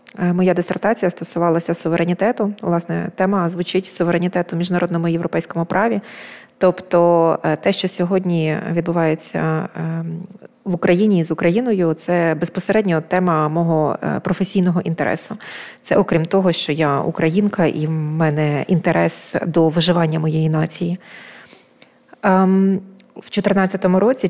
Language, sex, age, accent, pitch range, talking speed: Ukrainian, female, 20-39, native, 170-195 Hz, 110 wpm